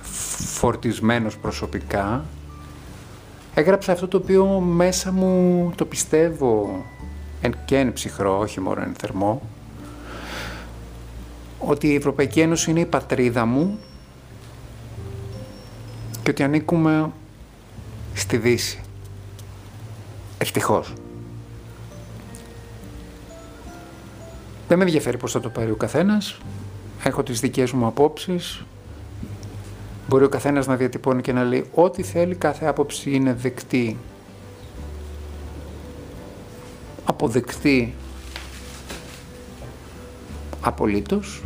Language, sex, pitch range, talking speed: Greek, male, 100-130 Hz, 85 wpm